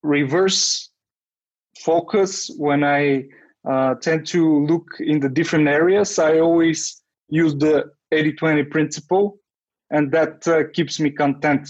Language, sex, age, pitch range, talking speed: English, male, 20-39, 140-160 Hz, 125 wpm